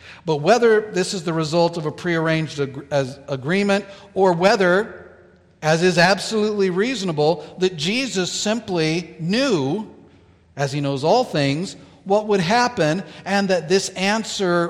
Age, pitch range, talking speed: 50-69, 150-185 Hz, 140 wpm